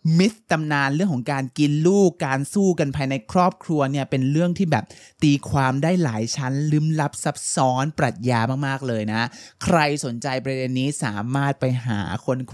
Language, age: Thai, 20-39